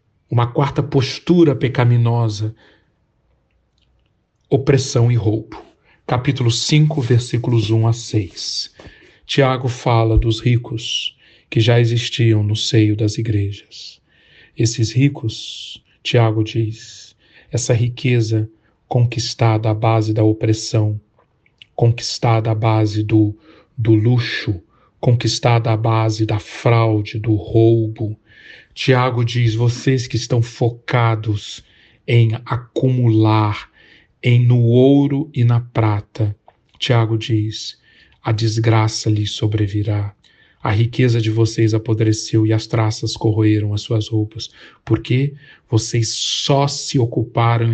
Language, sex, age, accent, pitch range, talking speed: Portuguese, male, 40-59, Brazilian, 110-125 Hz, 105 wpm